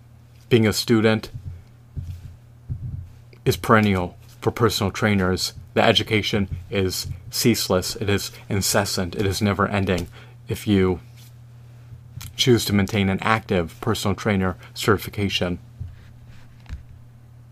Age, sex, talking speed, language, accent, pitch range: 30-49, male, 100 wpm, English, American, 105-120 Hz